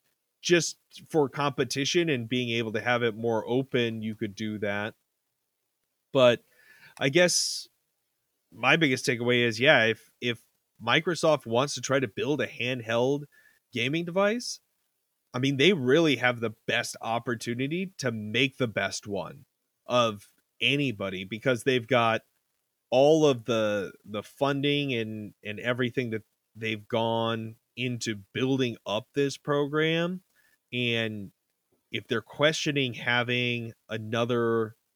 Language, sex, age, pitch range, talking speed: English, male, 30-49, 110-135 Hz, 130 wpm